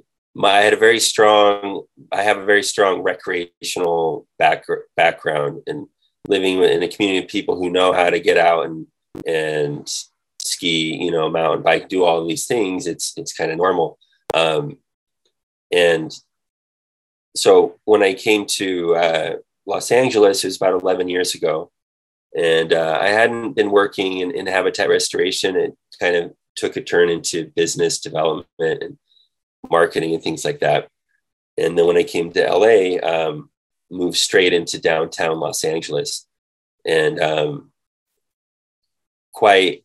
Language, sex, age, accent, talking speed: English, male, 20-39, American, 155 wpm